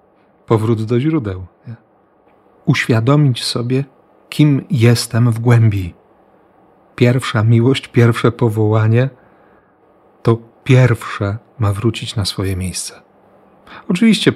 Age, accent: 40-59, native